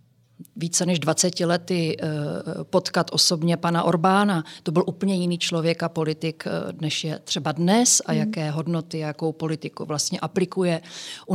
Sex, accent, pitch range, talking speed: female, native, 165-190 Hz, 150 wpm